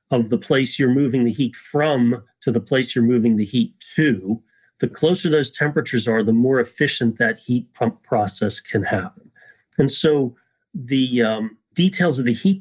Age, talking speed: 40-59, 180 wpm